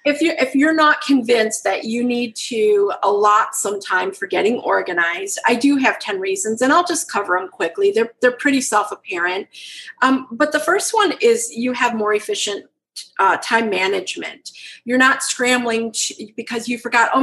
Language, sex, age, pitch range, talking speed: English, female, 40-59, 215-275 Hz, 185 wpm